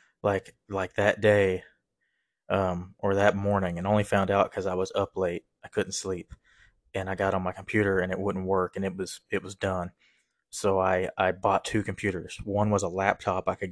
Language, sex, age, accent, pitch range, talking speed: English, male, 20-39, American, 95-100 Hz, 210 wpm